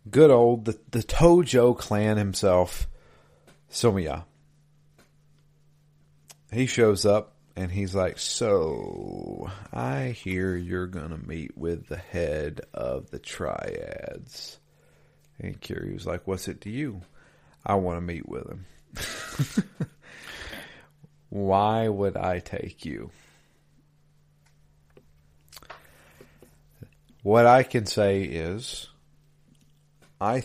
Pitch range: 90-150 Hz